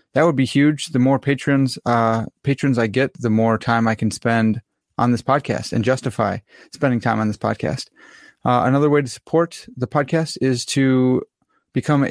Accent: American